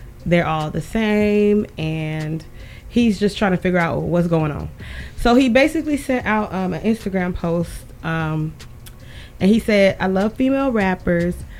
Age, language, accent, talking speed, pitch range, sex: 20-39, English, American, 160 wpm, 160-205 Hz, female